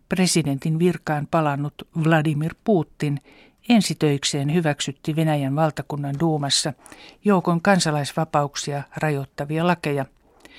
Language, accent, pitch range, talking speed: Finnish, native, 140-175 Hz, 80 wpm